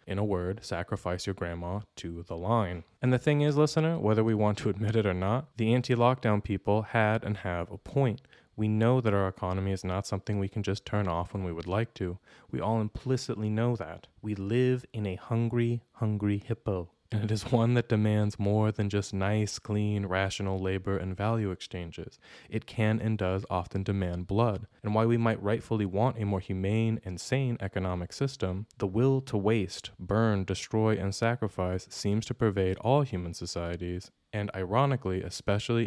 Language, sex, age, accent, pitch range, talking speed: English, male, 20-39, American, 95-115 Hz, 190 wpm